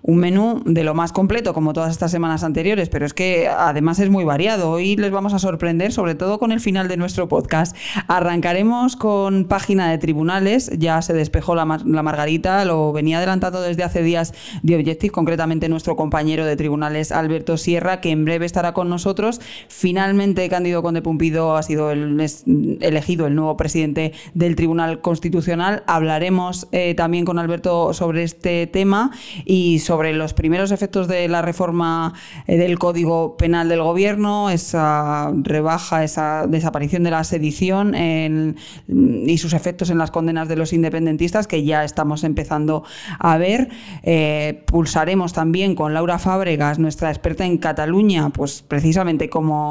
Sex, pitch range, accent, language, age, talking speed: female, 160-185 Hz, Spanish, Spanish, 20-39, 165 wpm